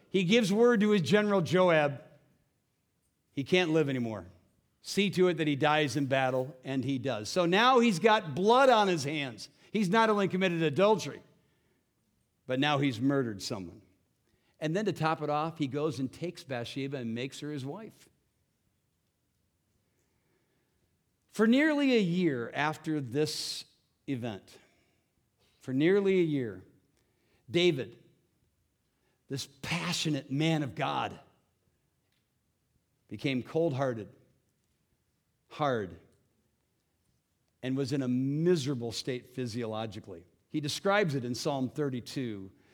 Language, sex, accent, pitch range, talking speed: English, male, American, 125-160 Hz, 125 wpm